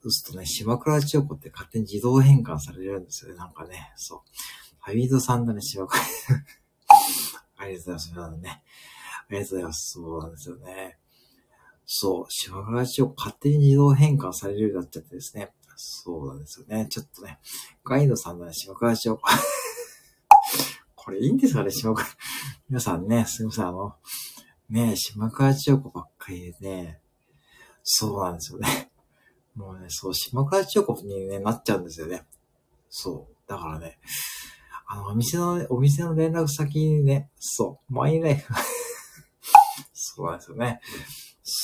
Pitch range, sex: 95-140 Hz, male